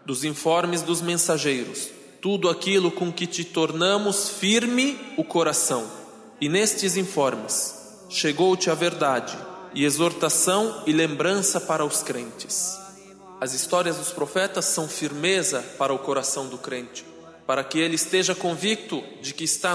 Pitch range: 155-190 Hz